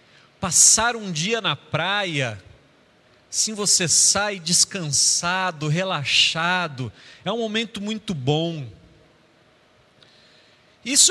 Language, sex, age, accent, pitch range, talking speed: Portuguese, male, 40-59, Brazilian, 155-225 Hz, 85 wpm